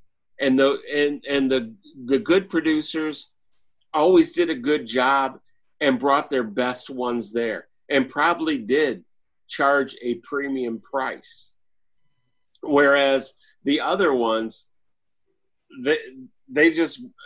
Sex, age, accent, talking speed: male, 50-69, American, 115 wpm